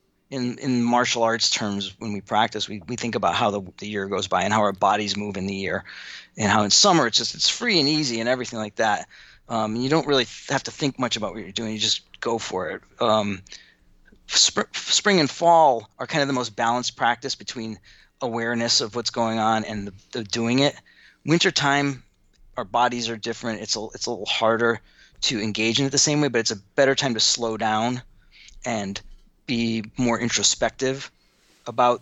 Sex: male